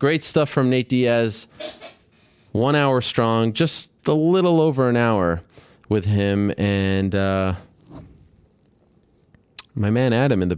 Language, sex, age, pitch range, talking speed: English, male, 30-49, 95-125 Hz, 130 wpm